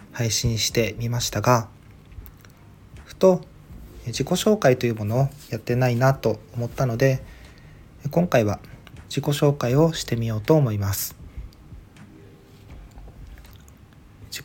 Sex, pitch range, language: male, 105-135 Hz, Japanese